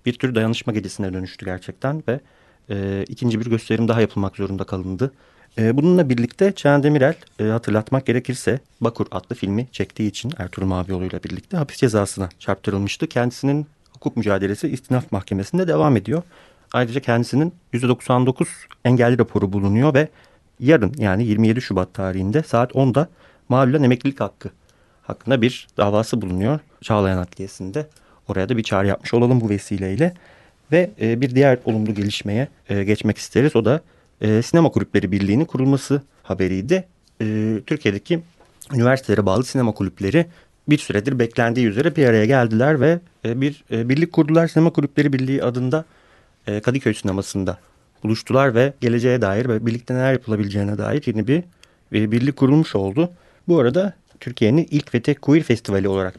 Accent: native